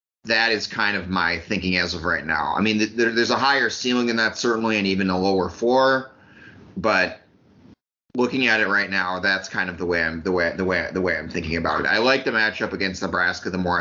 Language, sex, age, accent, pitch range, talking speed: English, male, 30-49, American, 90-110 Hz, 240 wpm